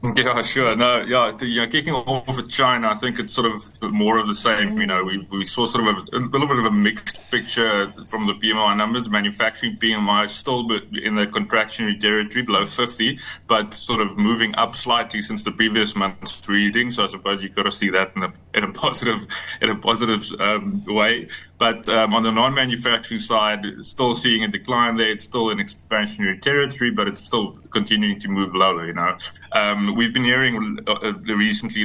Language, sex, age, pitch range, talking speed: English, male, 20-39, 100-120 Hz, 200 wpm